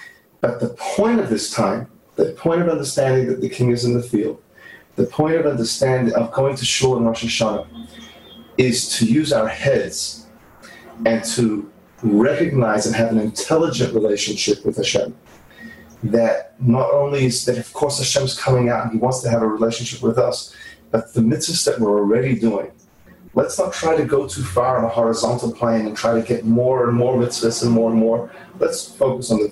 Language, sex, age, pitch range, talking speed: English, male, 30-49, 115-145 Hz, 195 wpm